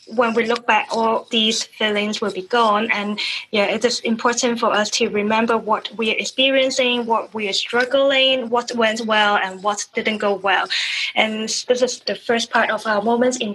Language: German